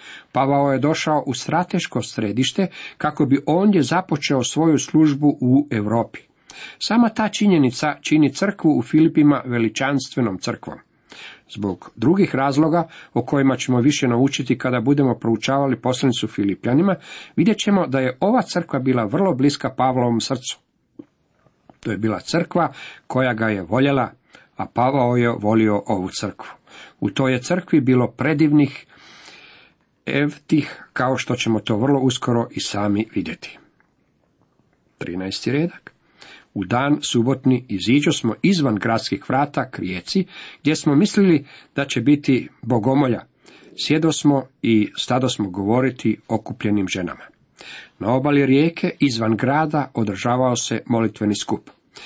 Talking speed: 130 wpm